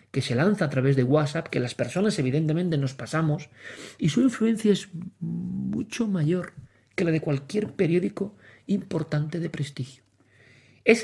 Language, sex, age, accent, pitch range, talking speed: Spanish, male, 40-59, Spanish, 125-165 Hz, 150 wpm